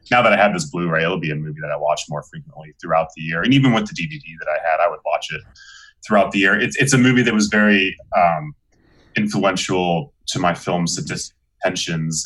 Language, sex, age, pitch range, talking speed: English, male, 30-49, 80-105 Hz, 225 wpm